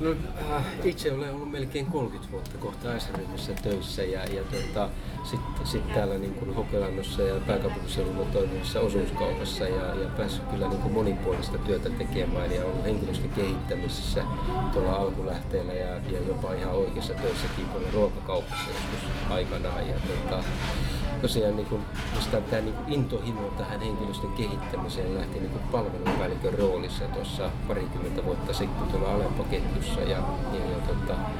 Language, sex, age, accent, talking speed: Finnish, male, 30-49, native, 135 wpm